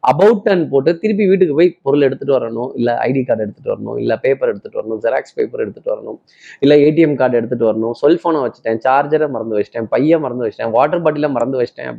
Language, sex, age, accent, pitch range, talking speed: Tamil, male, 20-39, native, 140-180 Hz, 195 wpm